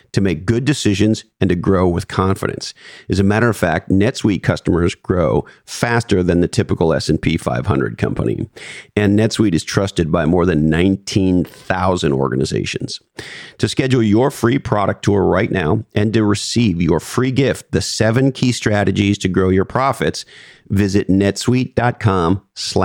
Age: 40-59